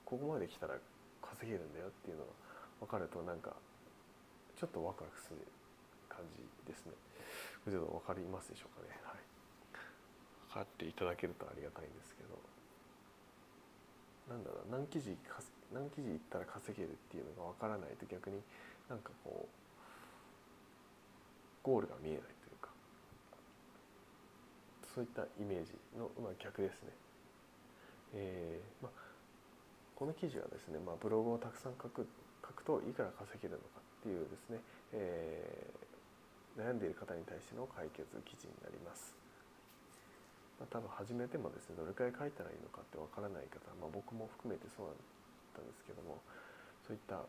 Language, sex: Japanese, male